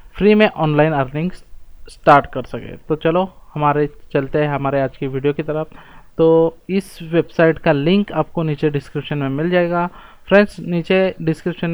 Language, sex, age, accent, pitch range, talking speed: English, male, 20-39, Indian, 145-165 Hz, 165 wpm